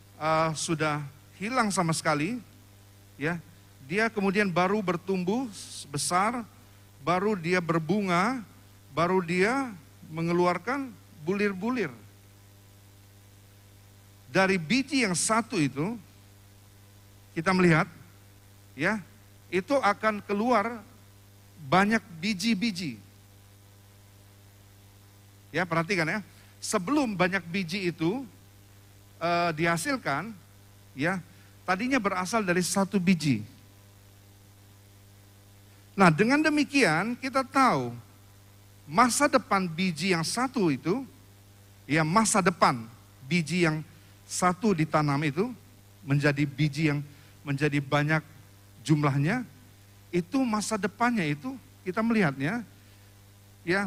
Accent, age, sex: native, 50-69, male